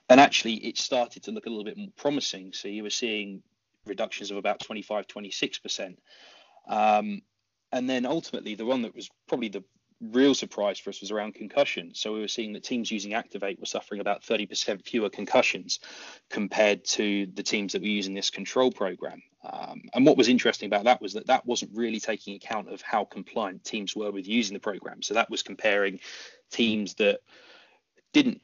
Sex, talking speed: male, 190 wpm